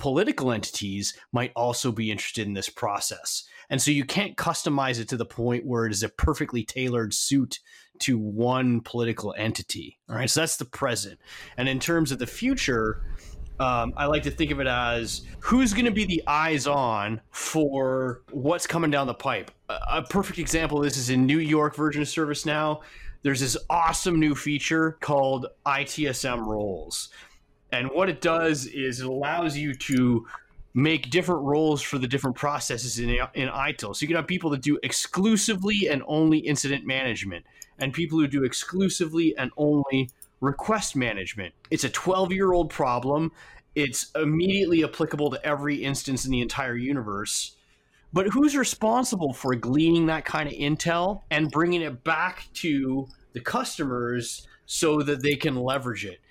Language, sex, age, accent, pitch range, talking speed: English, male, 30-49, American, 125-160 Hz, 170 wpm